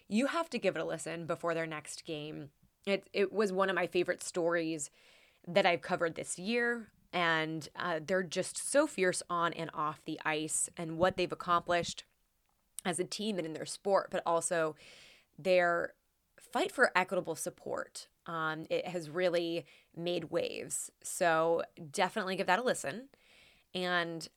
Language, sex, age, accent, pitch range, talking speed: English, female, 20-39, American, 165-205 Hz, 165 wpm